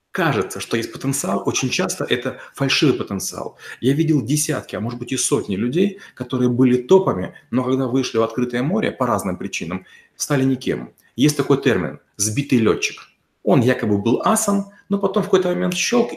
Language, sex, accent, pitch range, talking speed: Russian, male, native, 120-160 Hz, 175 wpm